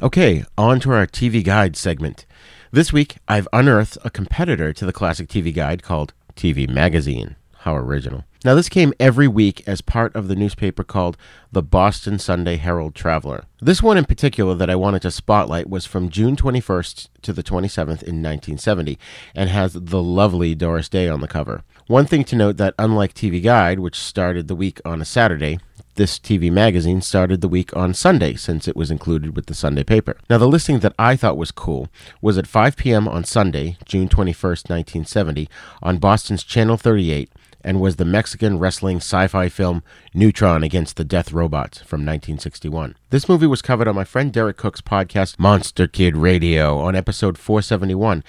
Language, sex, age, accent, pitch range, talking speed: English, male, 40-59, American, 85-115 Hz, 185 wpm